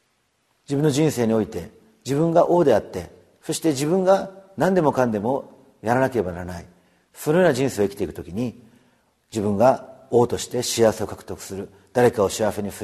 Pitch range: 105-150 Hz